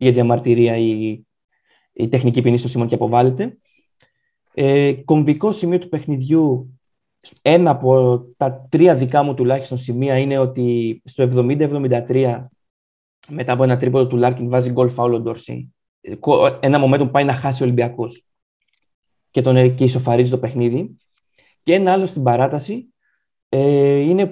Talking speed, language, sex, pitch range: 130 wpm, Greek, male, 125-165 Hz